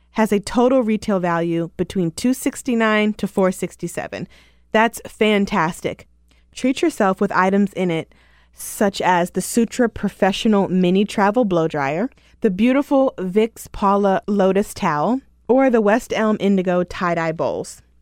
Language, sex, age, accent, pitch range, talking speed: English, female, 20-39, American, 170-220 Hz, 130 wpm